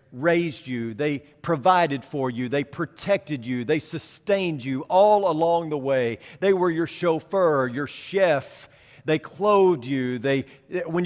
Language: English